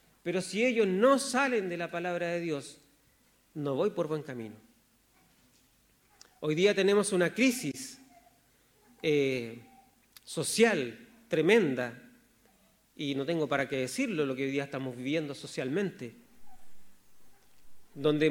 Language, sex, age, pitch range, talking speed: Spanish, male, 40-59, 155-230 Hz, 120 wpm